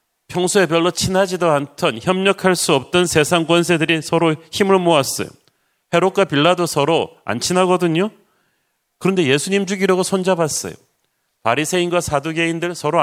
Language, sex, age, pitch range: Korean, male, 40-59, 145-180 Hz